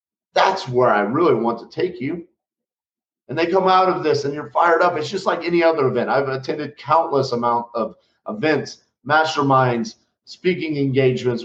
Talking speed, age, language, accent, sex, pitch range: 175 wpm, 40-59, English, American, male, 130-170 Hz